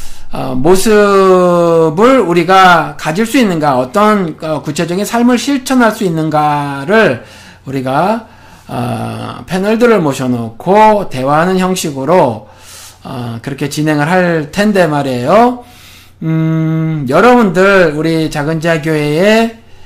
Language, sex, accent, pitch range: Korean, male, native, 130-195 Hz